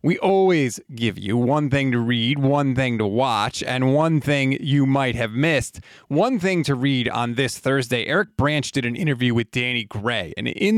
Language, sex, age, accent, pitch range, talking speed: English, male, 30-49, American, 120-155 Hz, 200 wpm